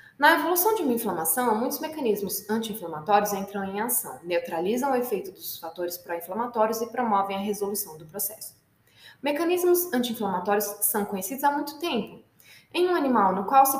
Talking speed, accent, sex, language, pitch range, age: 155 wpm, Brazilian, female, Portuguese, 185-275 Hz, 10-29